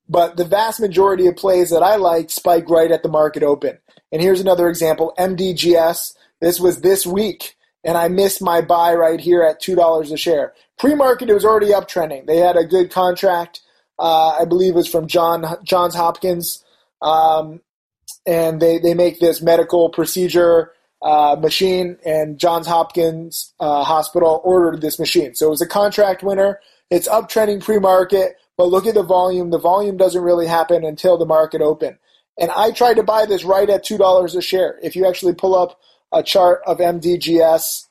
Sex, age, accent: male, 20-39, American